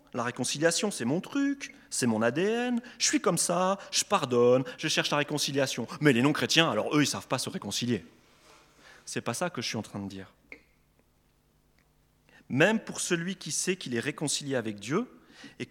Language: French